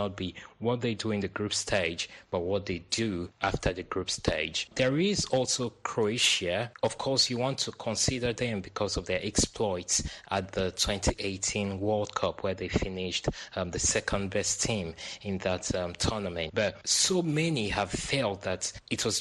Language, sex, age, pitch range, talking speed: English, male, 20-39, 95-115 Hz, 180 wpm